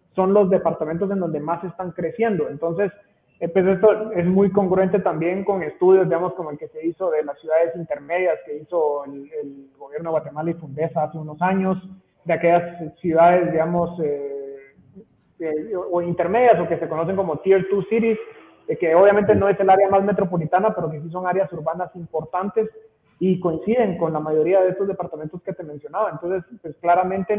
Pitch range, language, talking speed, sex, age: 160-195 Hz, Spanish, 185 wpm, male, 30-49